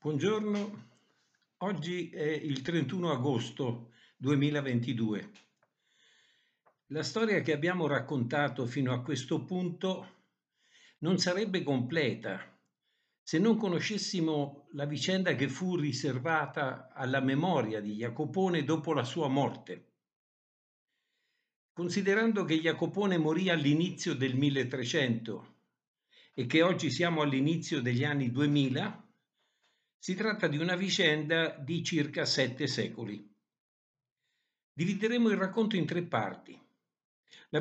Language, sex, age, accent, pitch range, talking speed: Italian, male, 60-79, native, 140-180 Hz, 105 wpm